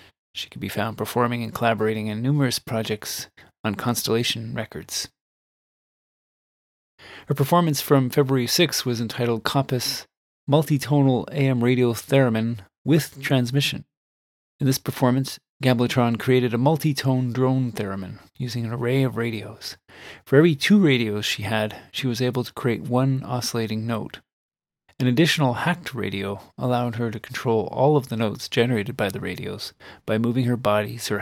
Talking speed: 145 wpm